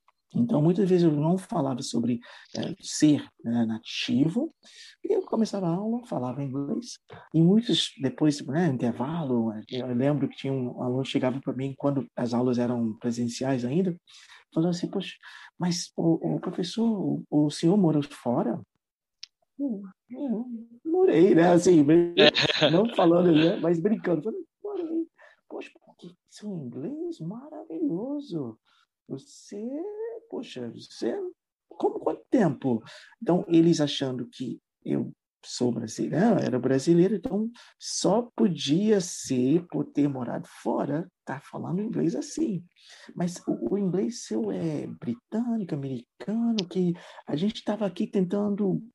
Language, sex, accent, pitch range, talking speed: English, male, Brazilian, 140-225 Hz, 130 wpm